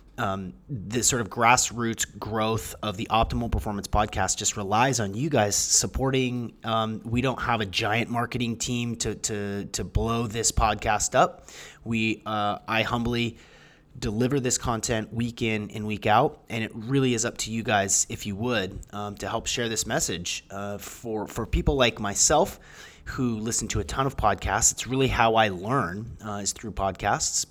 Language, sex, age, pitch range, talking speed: English, male, 30-49, 95-115 Hz, 180 wpm